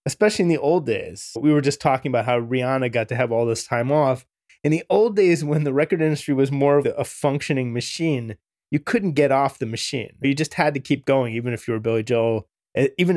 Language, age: English, 20-39